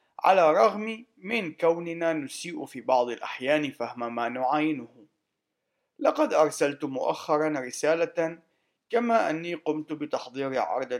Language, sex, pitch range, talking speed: Arabic, male, 125-170 Hz, 110 wpm